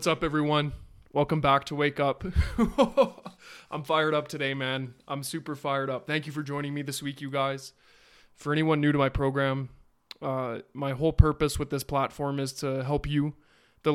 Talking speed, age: 190 wpm, 20-39